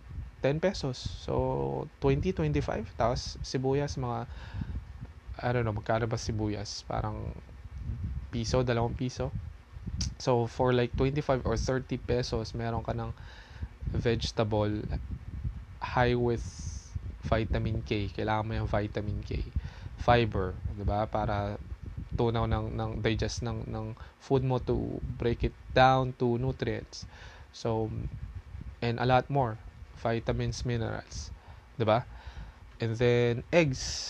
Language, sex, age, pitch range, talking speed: English, male, 20-39, 90-120 Hz, 115 wpm